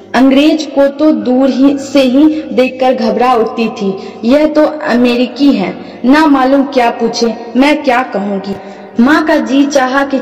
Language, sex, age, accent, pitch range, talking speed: Hindi, female, 20-39, native, 225-275 Hz, 160 wpm